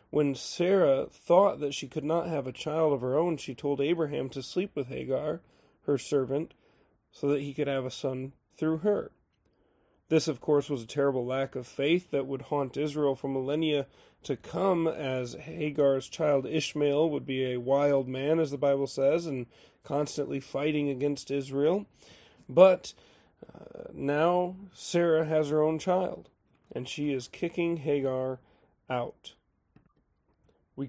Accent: American